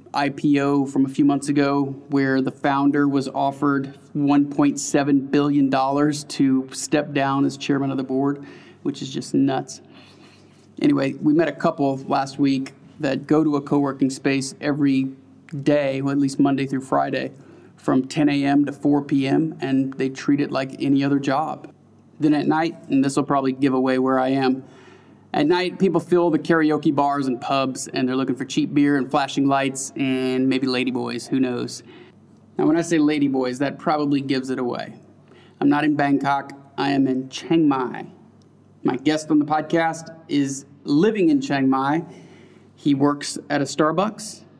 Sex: male